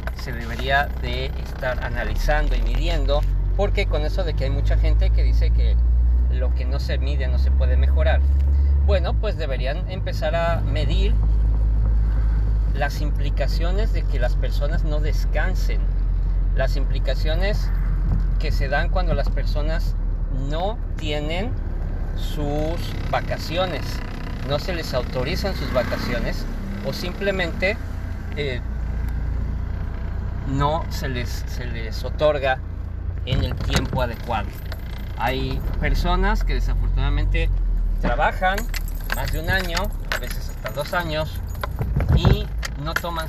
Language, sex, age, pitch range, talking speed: Spanish, male, 40-59, 70-100 Hz, 125 wpm